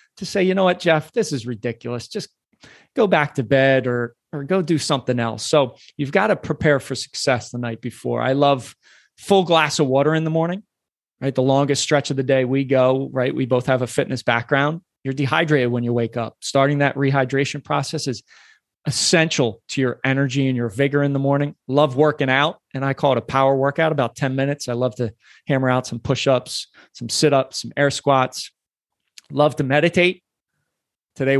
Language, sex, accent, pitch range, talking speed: English, male, American, 130-150 Hz, 200 wpm